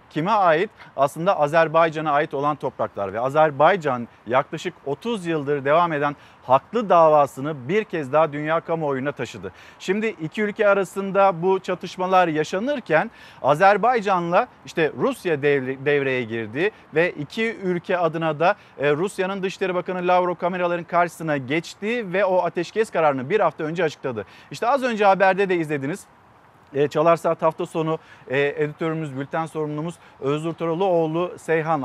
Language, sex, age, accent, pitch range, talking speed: Turkish, male, 40-59, native, 150-205 Hz, 135 wpm